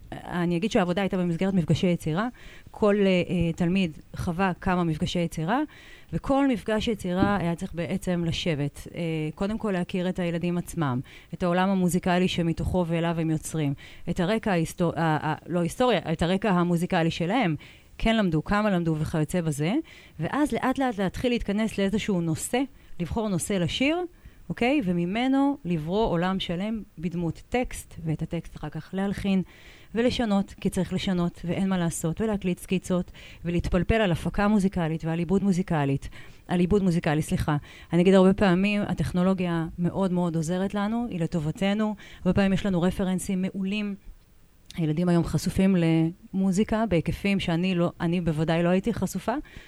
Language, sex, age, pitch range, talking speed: Hebrew, female, 30-49, 165-195 Hz, 145 wpm